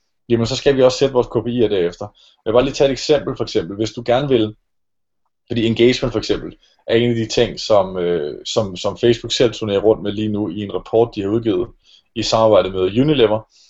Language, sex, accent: Danish, male, native